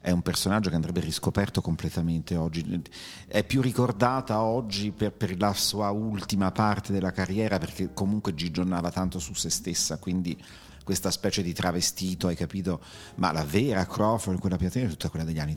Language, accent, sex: Italian, native, male